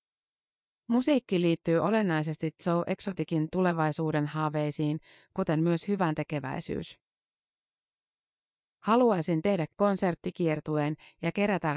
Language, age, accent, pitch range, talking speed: Finnish, 30-49, native, 155-185 Hz, 80 wpm